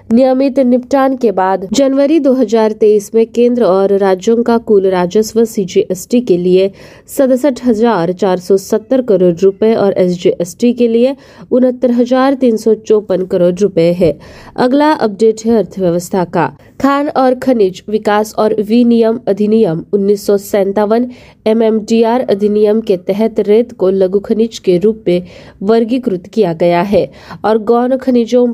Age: 20-39